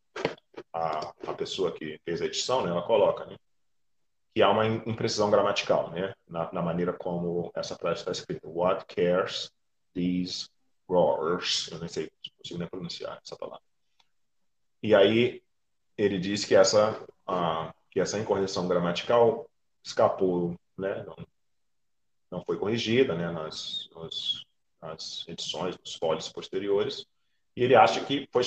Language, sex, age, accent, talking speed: Portuguese, male, 30-49, Brazilian, 140 wpm